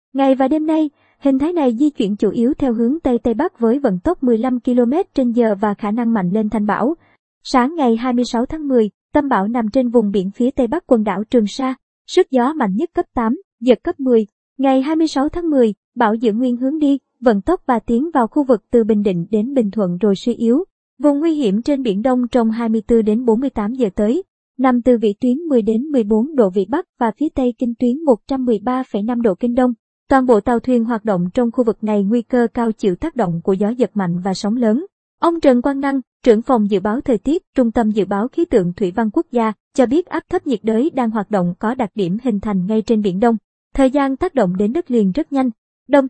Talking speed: 240 wpm